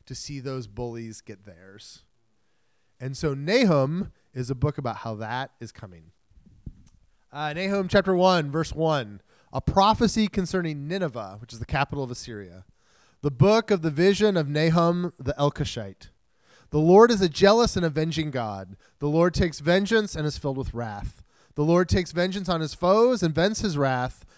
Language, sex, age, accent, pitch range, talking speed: English, male, 30-49, American, 125-185 Hz, 170 wpm